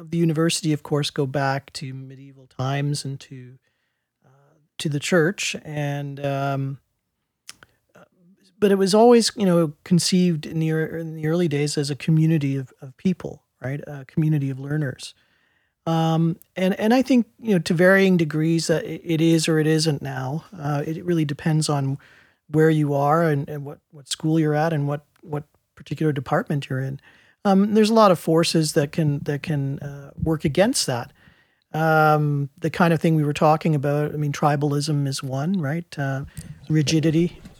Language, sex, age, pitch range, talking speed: English, male, 40-59, 145-165 Hz, 180 wpm